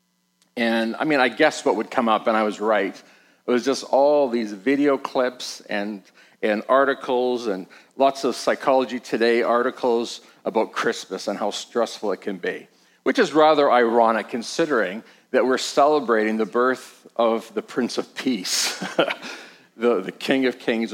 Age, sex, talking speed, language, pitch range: 50-69, male, 165 wpm, English, 115-140 Hz